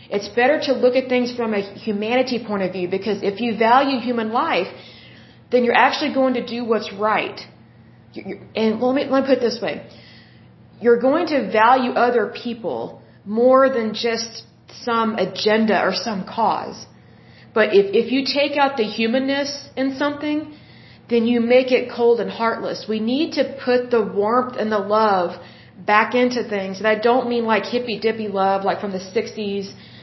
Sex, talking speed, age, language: female, 180 wpm, 30-49, Russian